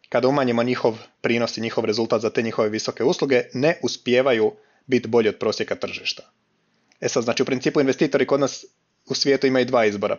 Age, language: 30-49, Croatian